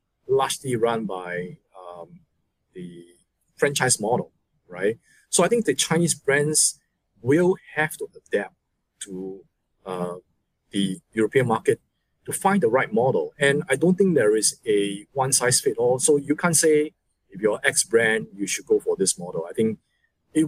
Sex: male